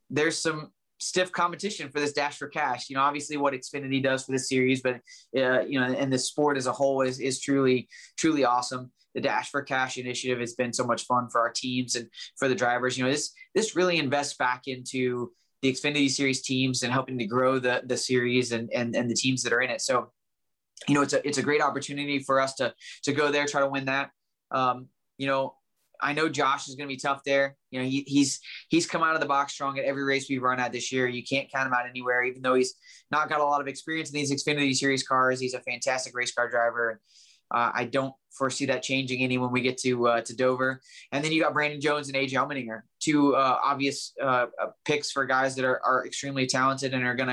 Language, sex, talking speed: English, male, 245 wpm